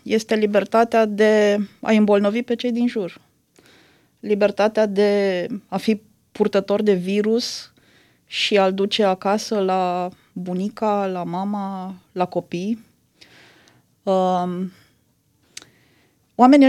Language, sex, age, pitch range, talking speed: Romanian, female, 20-39, 185-230 Hz, 95 wpm